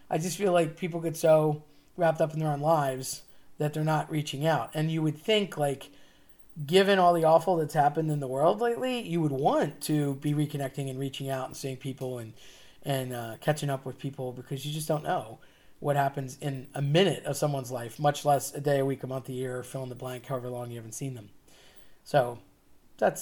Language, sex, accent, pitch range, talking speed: English, male, American, 135-170 Hz, 225 wpm